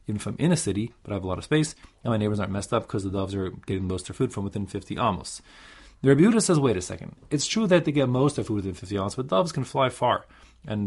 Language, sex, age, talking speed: English, male, 30-49, 305 wpm